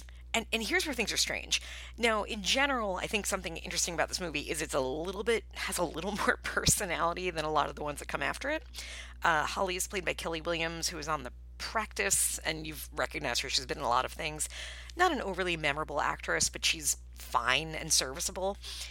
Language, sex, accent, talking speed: English, female, American, 220 wpm